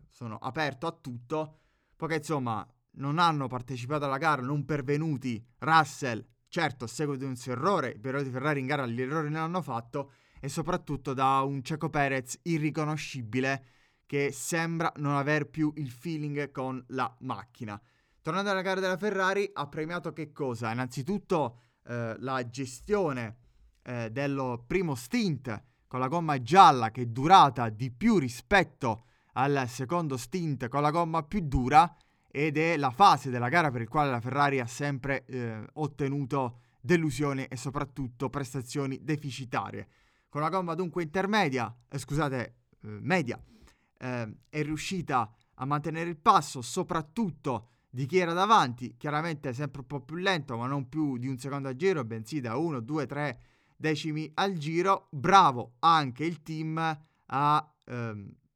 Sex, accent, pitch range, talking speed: male, native, 125-160 Hz, 155 wpm